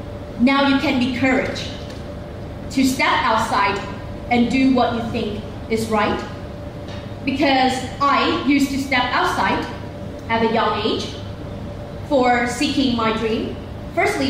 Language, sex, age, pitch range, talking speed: English, female, 20-39, 230-270 Hz, 125 wpm